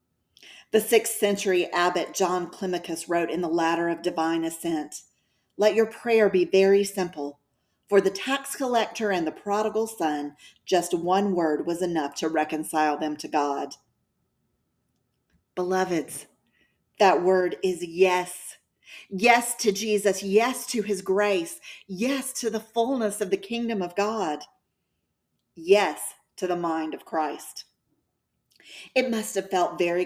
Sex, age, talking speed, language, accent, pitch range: female, 40-59, 140 wpm, English, American, 160-210 Hz